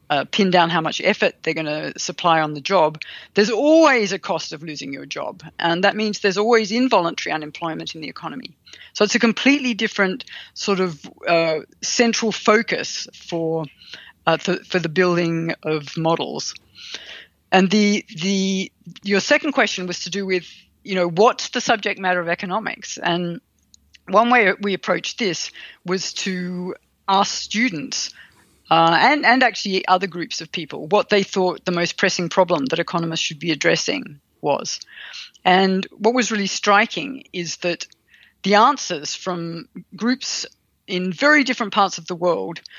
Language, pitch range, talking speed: English, 170-215 Hz, 165 wpm